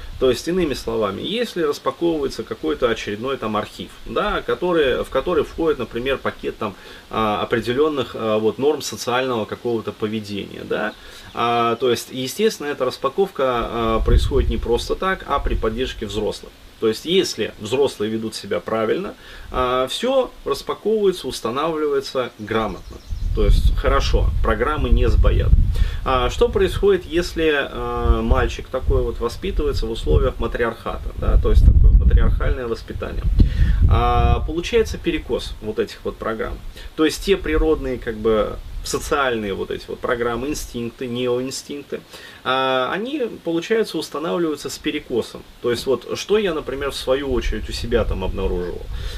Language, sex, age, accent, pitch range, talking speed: Russian, male, 30-49, native, 105-150 Hz, 125 wpm